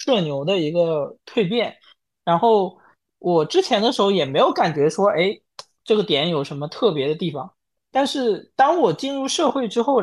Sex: male